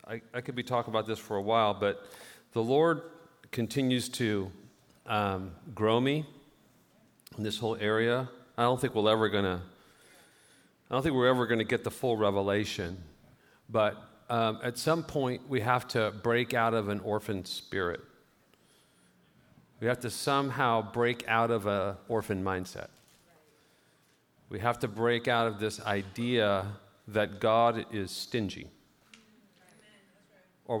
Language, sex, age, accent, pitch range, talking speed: English, male, 40-59, American, 105-125 Hz, 145 wpm